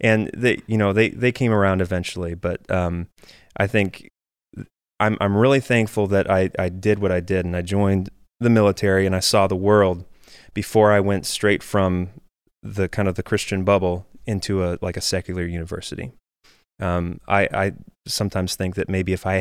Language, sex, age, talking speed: English, male, 20-39, 185 wpm